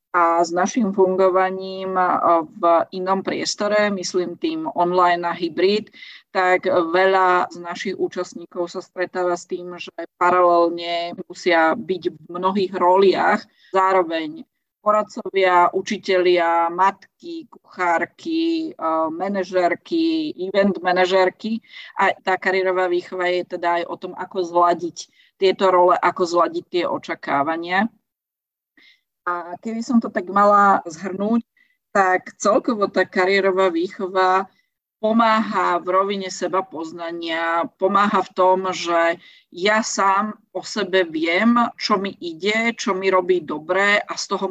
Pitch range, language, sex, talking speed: 175-200 Hz, Slovak, female, 120 wpm